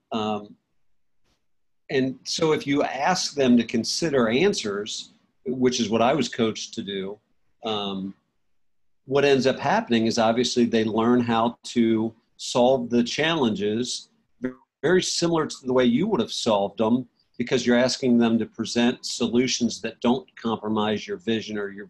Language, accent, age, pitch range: English, American, 50-69, 110-130 Hz